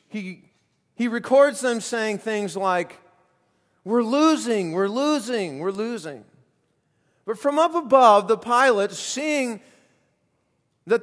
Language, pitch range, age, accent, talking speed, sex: English, 180-265 Hz, 40-59, American, 115 wpm, male